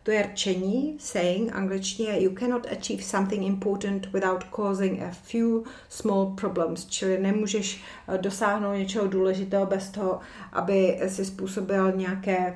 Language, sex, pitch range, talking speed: Czech, female, 190-215 Hz, 130 wpm